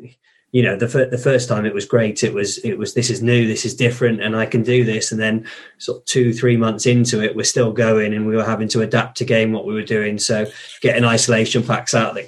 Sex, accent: male, British